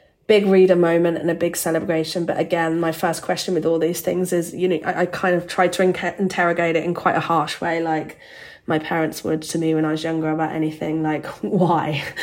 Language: English